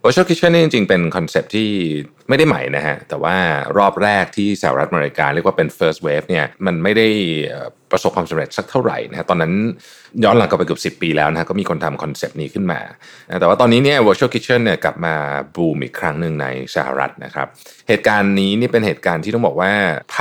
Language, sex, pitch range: Thai, male, 80-115 Hz